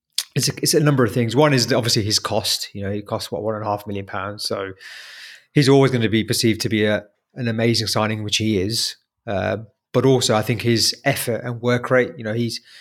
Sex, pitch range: male, 110-130 Hz